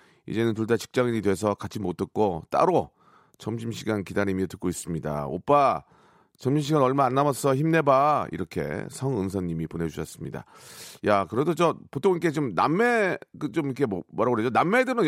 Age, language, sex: 40-59, Korean, male